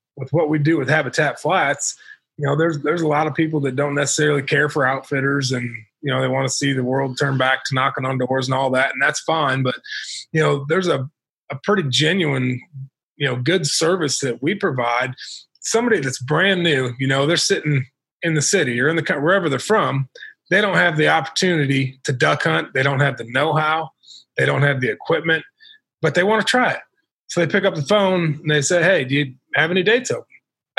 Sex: male